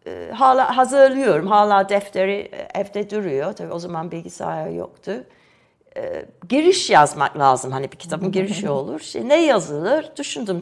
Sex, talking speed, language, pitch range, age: female, 135 wpm, Turkish, 155-225 Hz, 60-79